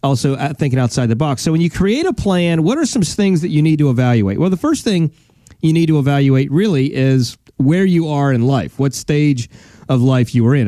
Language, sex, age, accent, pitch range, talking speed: English, male, 40-59, American, 130-180 Hz, 235 wpm